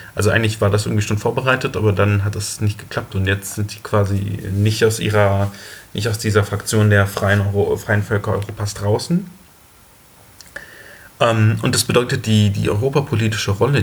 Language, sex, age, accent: German, male, 30-49, German